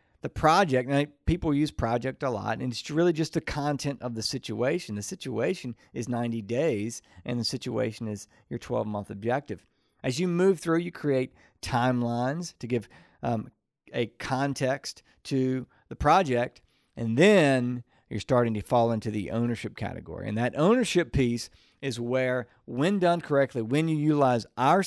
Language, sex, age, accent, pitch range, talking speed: English, male, 50-69, American, 115-145 Hz, 160 wpm